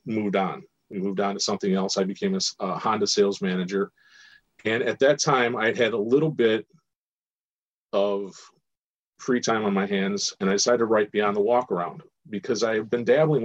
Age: 40-59